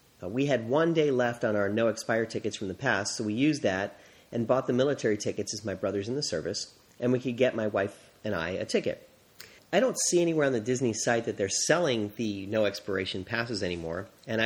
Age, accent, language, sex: 40-59, American, English, male